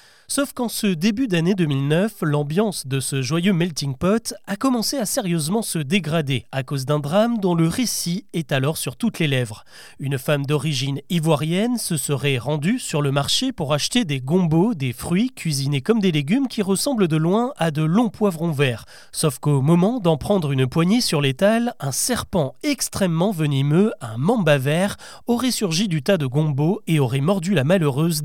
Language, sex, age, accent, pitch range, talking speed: French, male, 30-49, French, 145-210 Hz, 185 wpm